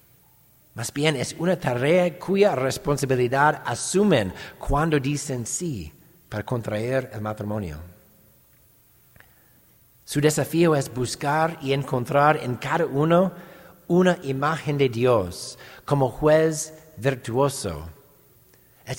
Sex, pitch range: male, 110-140 Hz